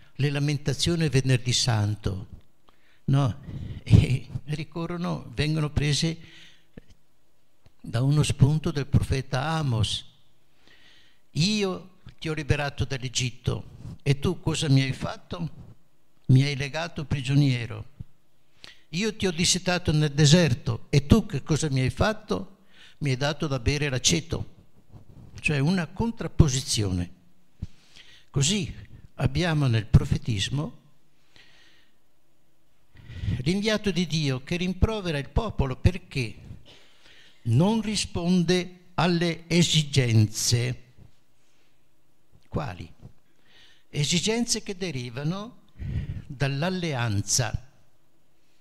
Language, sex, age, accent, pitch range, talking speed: Italian, male, 60-79, native, 125-165 Hz, 90 wpm